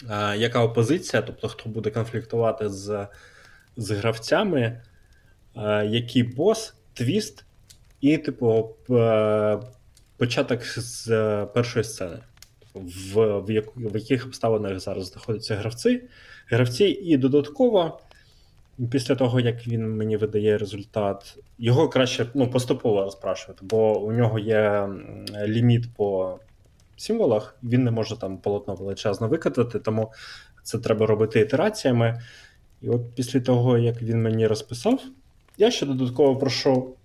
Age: 20-39